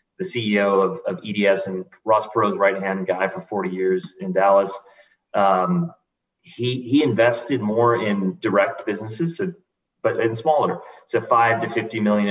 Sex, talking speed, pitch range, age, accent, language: male, 155 wpm, 95-120 Hz, 30-49, American, English